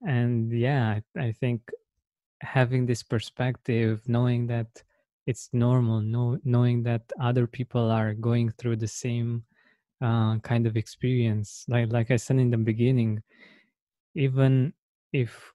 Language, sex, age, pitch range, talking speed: English, male, 20-39, 115-130 Hz, 135 wpm